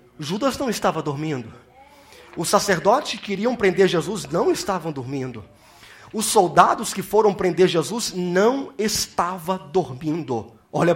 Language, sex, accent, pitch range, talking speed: Portuguese, male, Brazilian, 190-255 Hz, 125 wpm